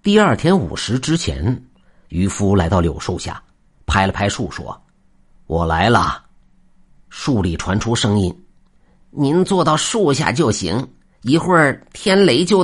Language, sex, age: Chinese, male, 50-69